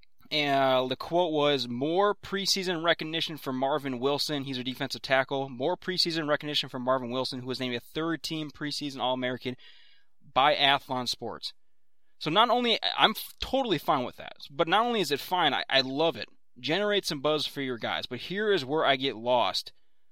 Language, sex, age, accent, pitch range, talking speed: English, male, 20-39, American, 130-160 Hz, 180 wpm